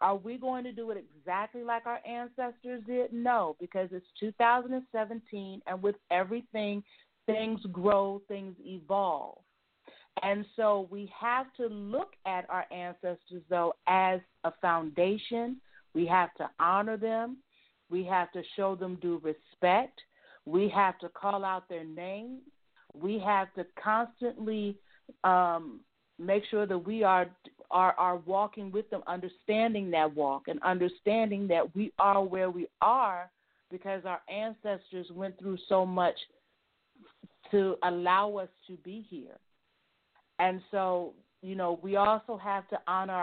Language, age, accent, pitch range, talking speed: English, 40-59, American, 180-210 Hz, 140 wpm